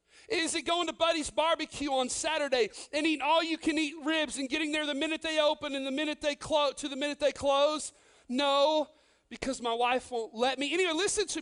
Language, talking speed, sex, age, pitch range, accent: English, 205 wpm, male, 40-59, 245-335 Hz, American